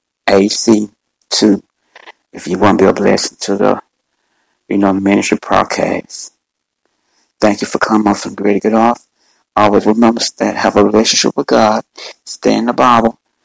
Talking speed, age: 170 wpm, 60-79